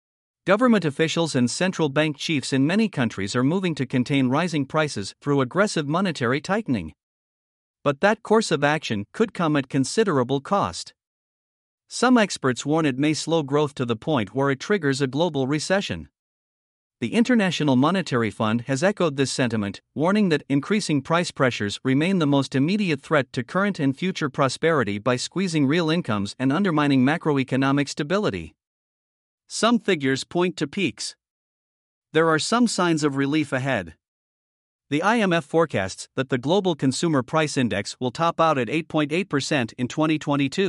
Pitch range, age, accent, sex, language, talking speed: 130-170 Hz, 50-69, American, male, English, 155 wpm